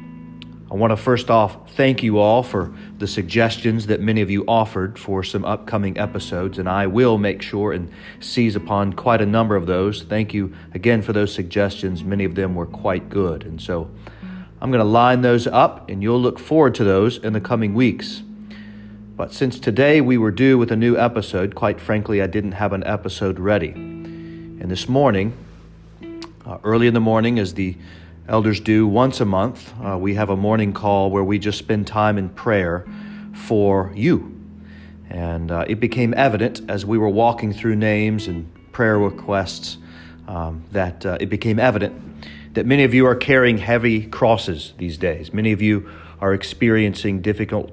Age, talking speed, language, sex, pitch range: 40-59, 185 wpm, English, male, 95-110 Hz